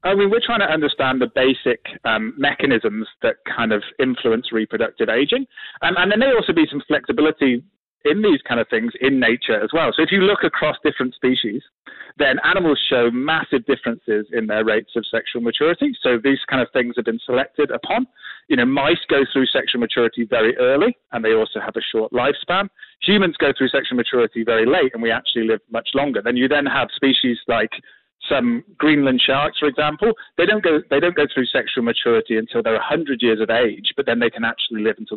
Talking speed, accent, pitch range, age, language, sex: 205 wpm, British, 115-165 Hz, 30-49, English, male